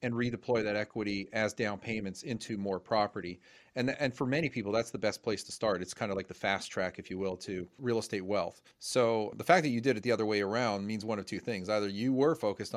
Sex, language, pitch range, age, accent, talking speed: male, English, 95-115 Hz, 40-59, American, 260 wpm